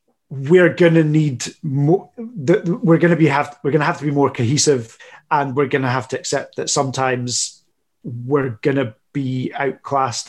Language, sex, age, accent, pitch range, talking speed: English, male, 30-49, British, 130-155 Hz, 150 wpm